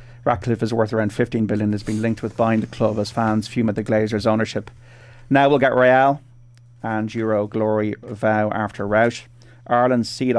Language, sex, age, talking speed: English, male, 30-49, 180 wpm